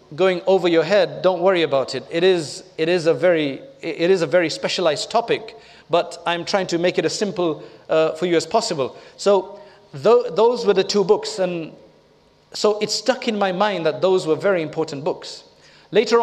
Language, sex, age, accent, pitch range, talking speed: English, male, 40-59, South African, 170-205 Hz, 205 wpm